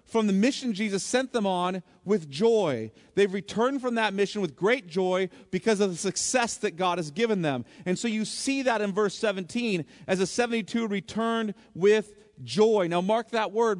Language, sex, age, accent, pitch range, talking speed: English, male, 40-59, American, 175-225 Hz, 190 wpm